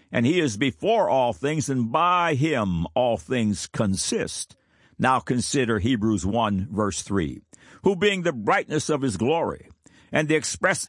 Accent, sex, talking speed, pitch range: American, male, 155 wpm, 100-145 Hz